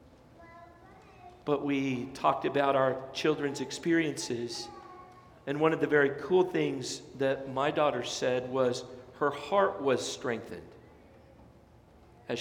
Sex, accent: male, American